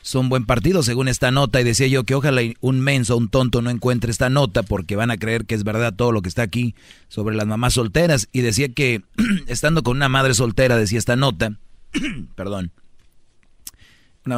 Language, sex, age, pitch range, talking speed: Spanish, male, 40-59, 115-135 Hz, 200 wpm